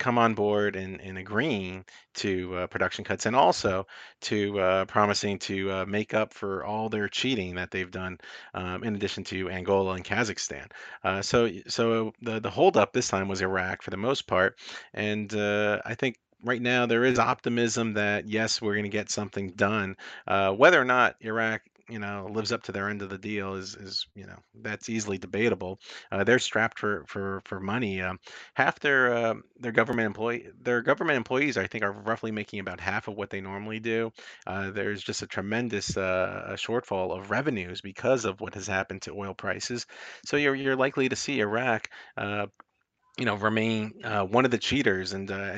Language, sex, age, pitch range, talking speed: English, male, 40-59, 95-115 Hz, 200 wpm